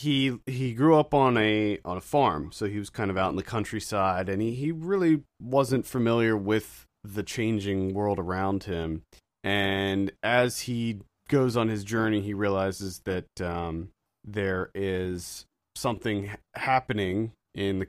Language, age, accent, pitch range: English, 30-49, American, 95-120 Hz